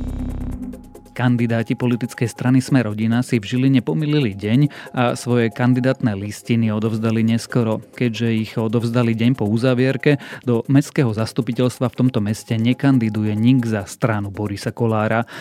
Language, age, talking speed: Slovak, 30-49, 130 wpm